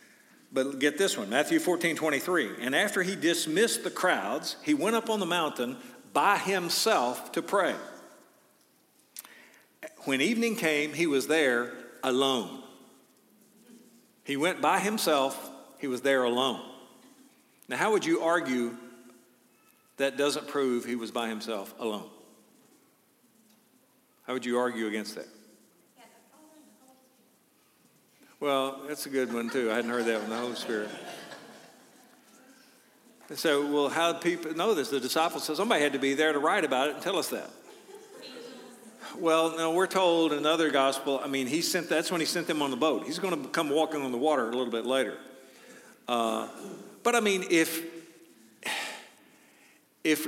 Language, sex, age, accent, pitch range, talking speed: Russian, male, 50-69, American, 130-195 Hz, 155 wpm